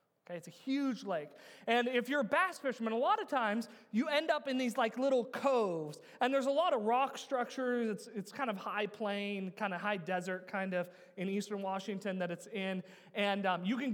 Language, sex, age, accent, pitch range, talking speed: English, male, 30-49, American, 185-245 Hz, 220 wpm